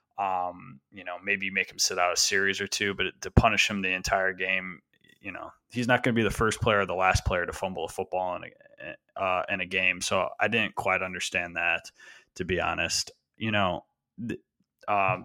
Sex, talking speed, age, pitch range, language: male, 220 wpm, 20-39, 95-115 Hz, English